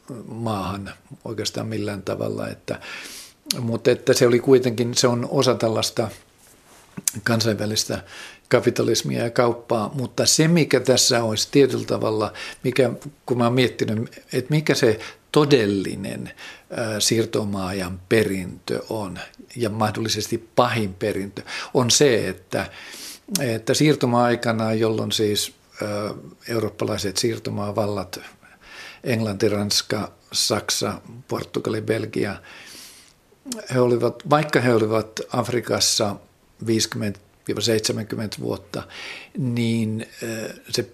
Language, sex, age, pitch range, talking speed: Finnish, male, 50-69, 105-125 Hz, 95 wpm